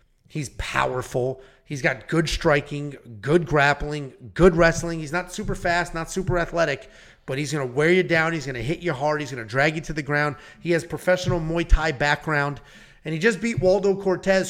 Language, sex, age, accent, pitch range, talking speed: English, male, 30-49, American, 145-190 Hz, 205 wpm